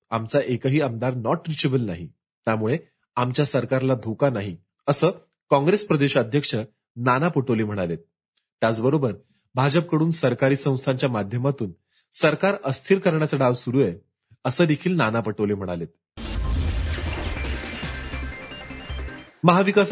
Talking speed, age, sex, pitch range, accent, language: 100 wpm, 30-49, male, 105-155 Hz, native, Marathi